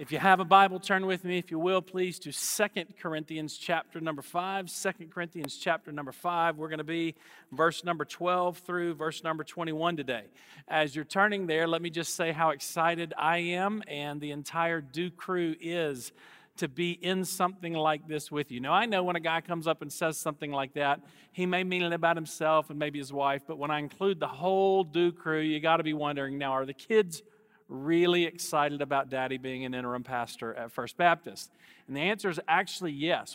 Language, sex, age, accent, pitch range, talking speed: English, male, 40-59, American, 150-180 Hz, 210 wpm